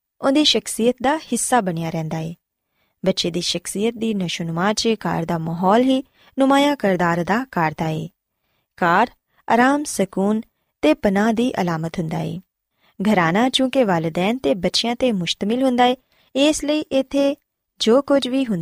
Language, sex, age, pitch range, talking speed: Punjabi, female, 20-39, 175-255 Hz, 130 wpm